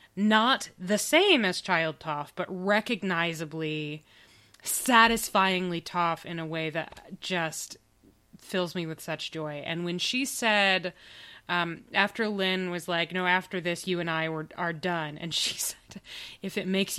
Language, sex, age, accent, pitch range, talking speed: English, female, 20-39, American, 165-205 Hz, 155 wpm